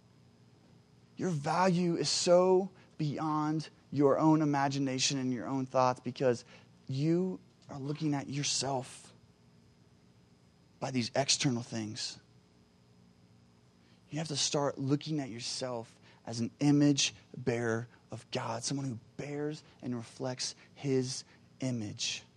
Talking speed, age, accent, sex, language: 115 wpm, 30-49, American, male, English